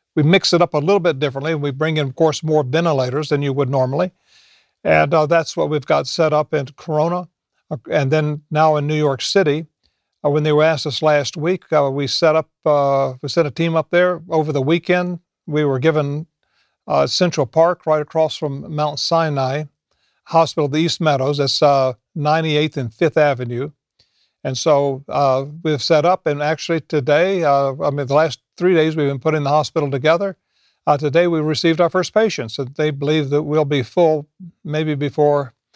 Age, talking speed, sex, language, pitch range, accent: 50-69, 200 wpm, male, English, 145-165 Hz, American